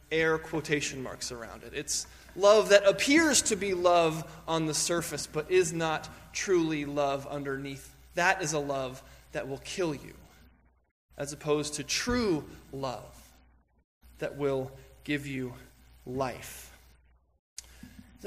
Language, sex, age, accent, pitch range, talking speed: English, male, 20-39, American, 140-190 Hz, 130 wpm